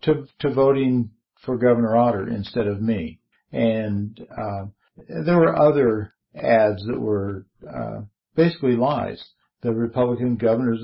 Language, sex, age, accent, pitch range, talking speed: English, male, 60-79, American, 105-125 Hz, 125 wpm